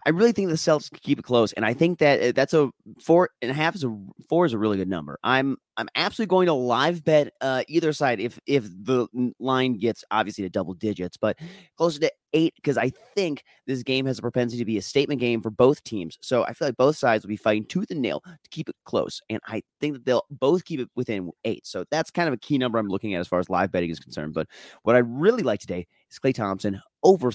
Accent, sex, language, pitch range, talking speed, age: American, male, English, 110-150 Hz, 260 wpm, 30-49